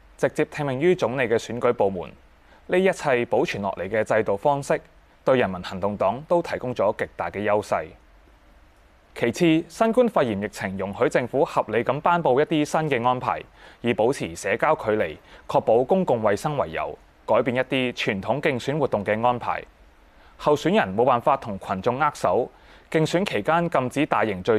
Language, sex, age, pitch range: Chinese, male, 20-39, 100-155 Hz